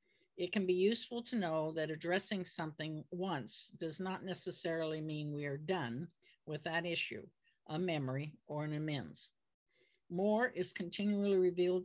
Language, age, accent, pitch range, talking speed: English, 60-79, American, 150-185 Hz, 145 wpm